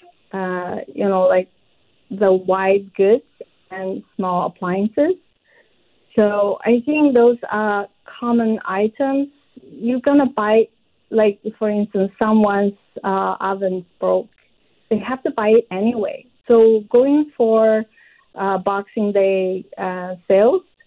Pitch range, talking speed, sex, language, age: 195-240 Hz, 120 wpm, female, English, 40-59